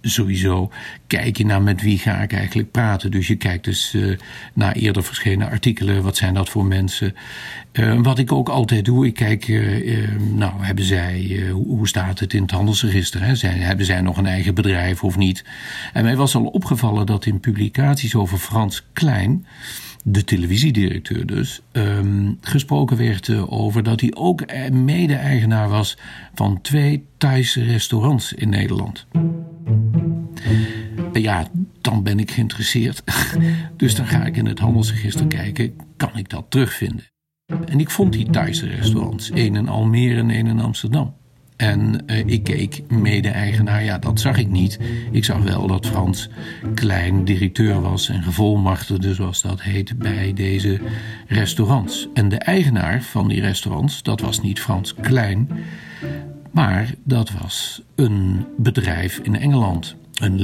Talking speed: 155 wpm